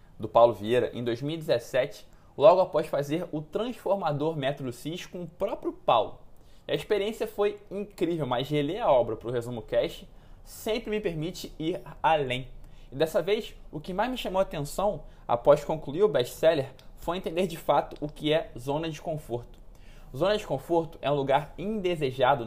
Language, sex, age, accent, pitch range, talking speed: Portuguese, male, 20-39, Brazilian, 135-195 Hz, 170 wpm